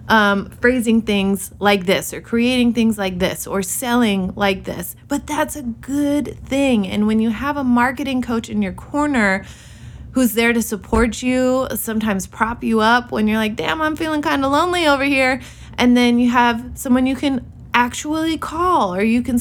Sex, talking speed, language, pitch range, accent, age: female, 190 wpm, English, 190-250 Hz, American, 20-39